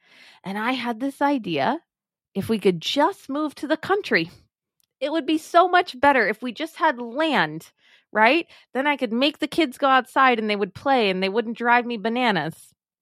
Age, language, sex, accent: 30-49, English, female, American